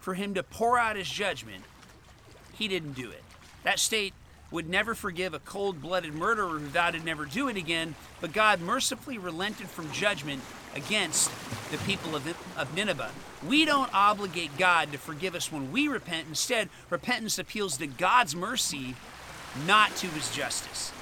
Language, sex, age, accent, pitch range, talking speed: English, male, 40-59, American, 150-215 Hz, 165 wpm